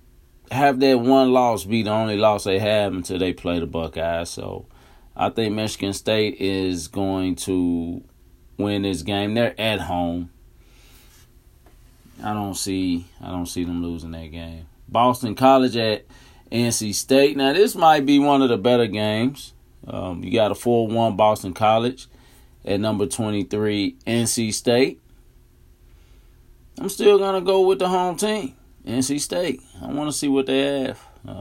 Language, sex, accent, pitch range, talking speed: English, male, American, 85-130 Hz, 155 wpm